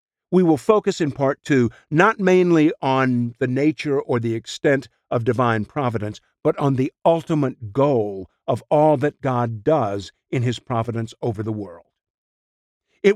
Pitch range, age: 115-155 Hz, 50-69